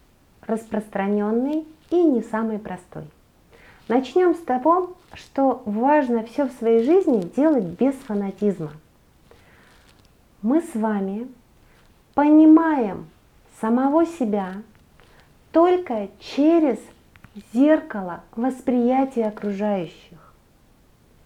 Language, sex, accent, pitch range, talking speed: Russian, female, native, 205-270 Hz, 80 wpm